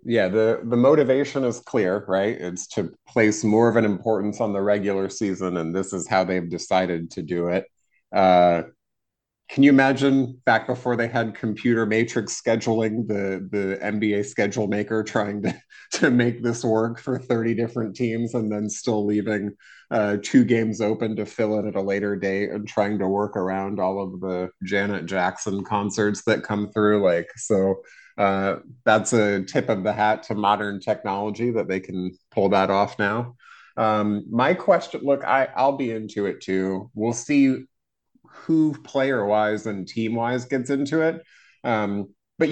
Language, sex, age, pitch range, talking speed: English, male, 30-49, 100-120 Hz, 175 wpm